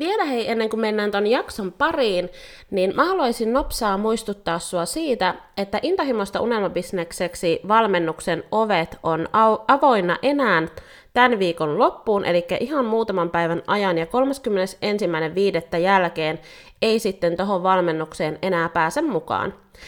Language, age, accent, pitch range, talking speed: Finnish, 30-49, native, 170-225 Hz, 120 wpm